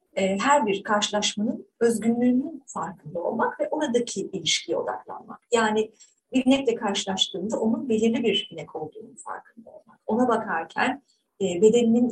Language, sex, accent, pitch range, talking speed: Turkish, female, native, 195-240 Hz, 120 wpm